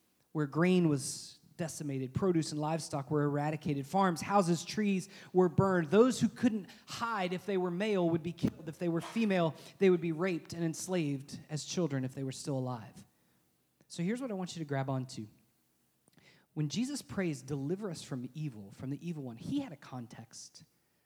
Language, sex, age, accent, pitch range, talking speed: English, male, 30-49, American, 145-215 Hz, 190 wpm